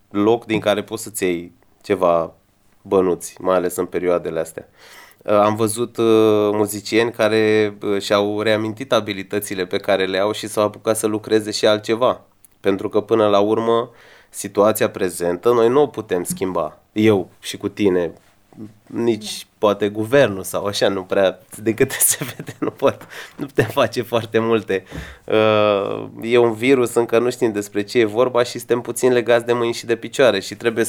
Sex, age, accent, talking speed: male, 20-39, native, 165 wpm